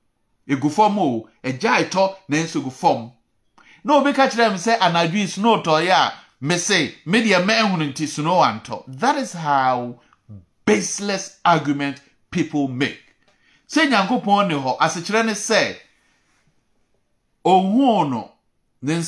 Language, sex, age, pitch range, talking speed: English, male, 50-69, 125-195 Hz, 130 wpm